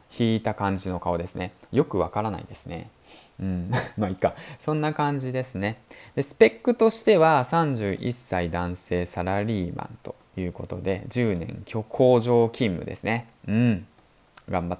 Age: 20-39